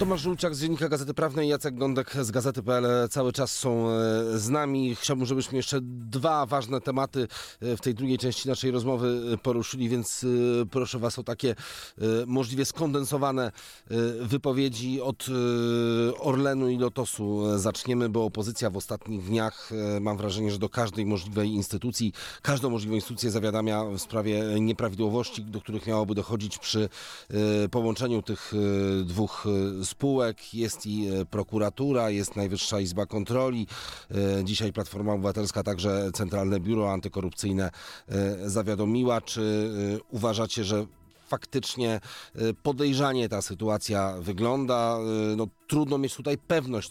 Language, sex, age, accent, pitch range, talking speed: Polish, male, 30-49, native, 105-125 Hz, 125 wpm